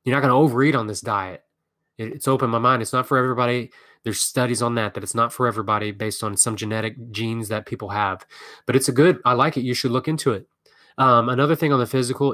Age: 20-39